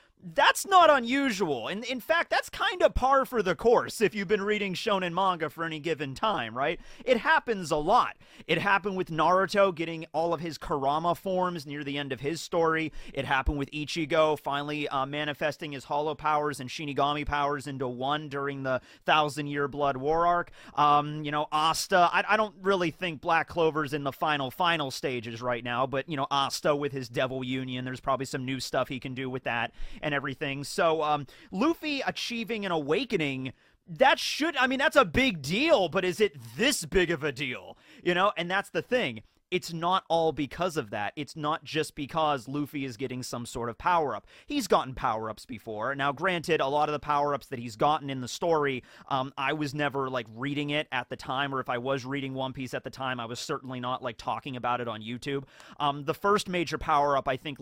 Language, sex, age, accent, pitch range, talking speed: English, male, 30-49, American, 130-170 Hz, 210 wpm